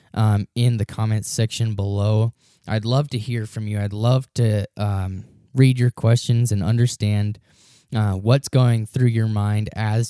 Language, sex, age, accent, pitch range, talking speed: English, male, 10-29, American, 115-140 Hz, 165 wpm